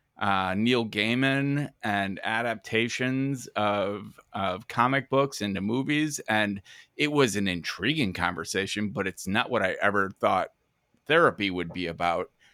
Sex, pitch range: male, 105-130 Hz